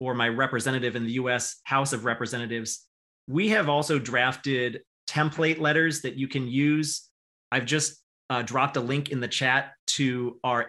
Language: English